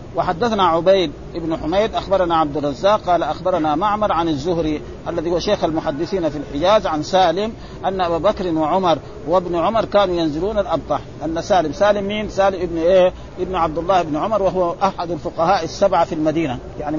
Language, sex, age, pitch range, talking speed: Arabic, male, 50-69, 160-200 Hz, 170 wpm